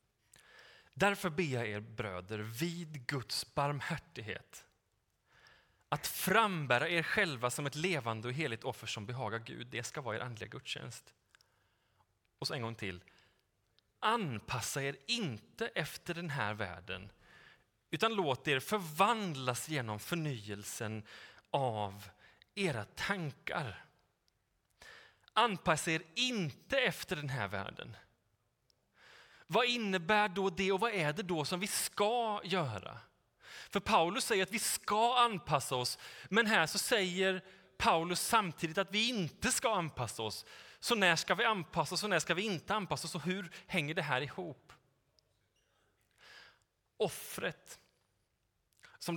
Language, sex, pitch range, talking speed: Swedish, male, 120-195 Hz, 135 wpm